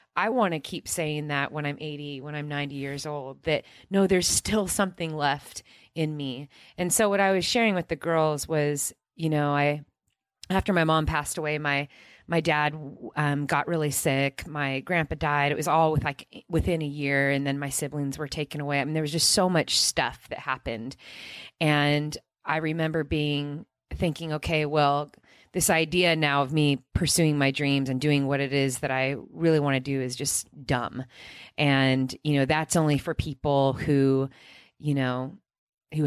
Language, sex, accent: English, female, American